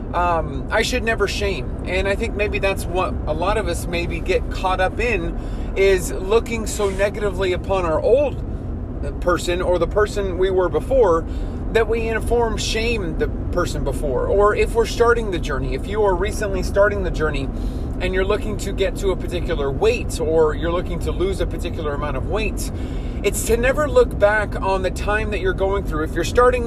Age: 30-49